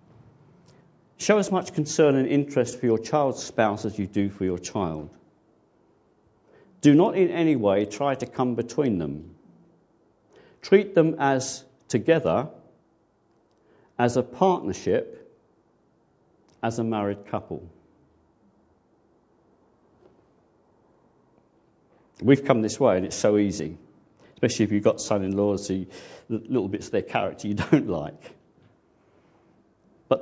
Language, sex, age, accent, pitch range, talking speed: English, male, 50-69, British, 95-140 Hz, 115 wpm